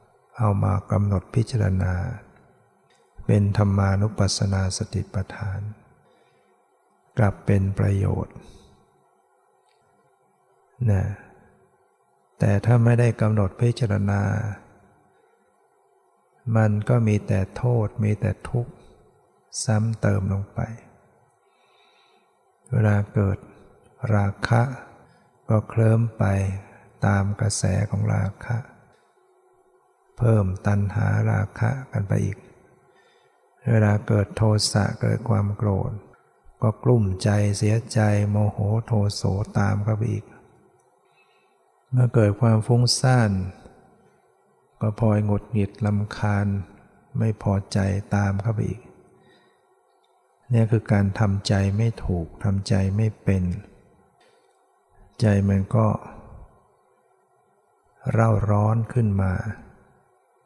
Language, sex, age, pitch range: English, male, 60-79, 100-115 Hz